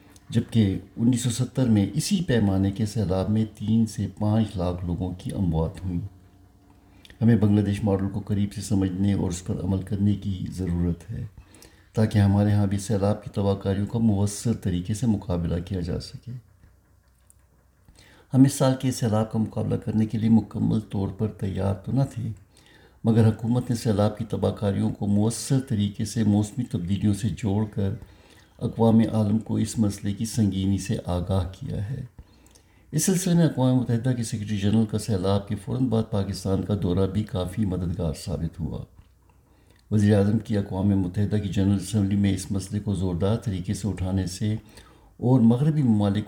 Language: Urdu